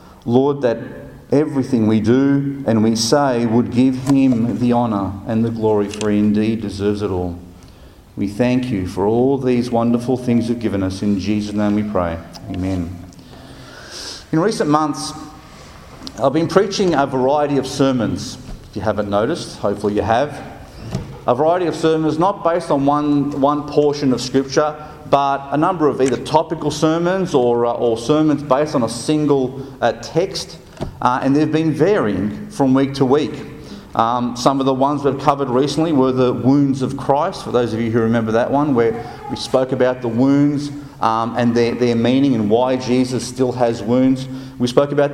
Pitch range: 110-145 Hz